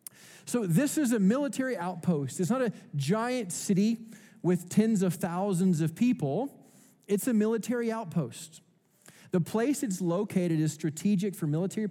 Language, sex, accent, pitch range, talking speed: English, male, American, 160-205 Hz, 145 wpm